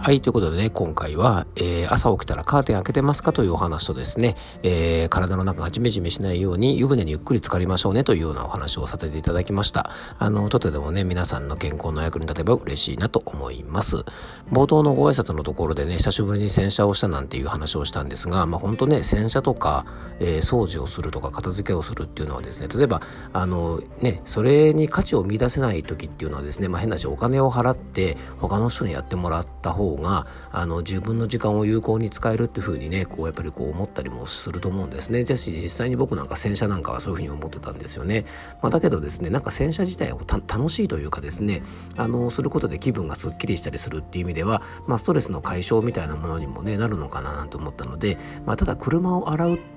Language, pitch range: Japanese, 80-115 Hz